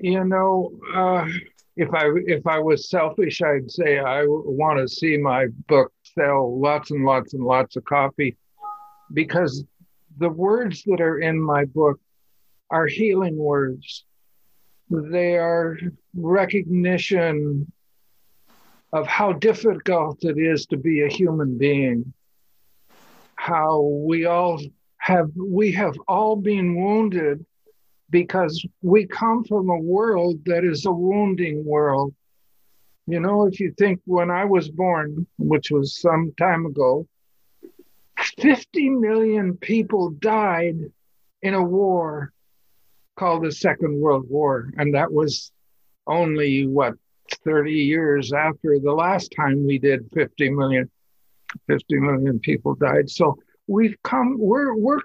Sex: male